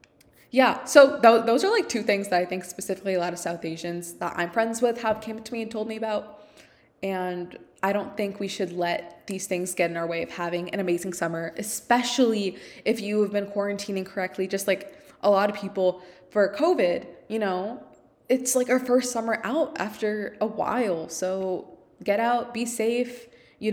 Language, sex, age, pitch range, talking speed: English, female, 20-39, 185-235 Hz, 195 wpm